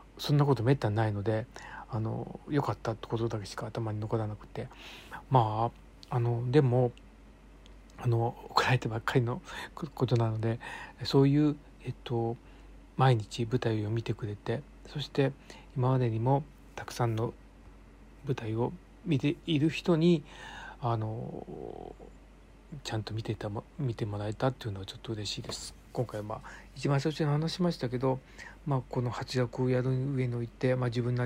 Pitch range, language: 110-130 Hz, Japanese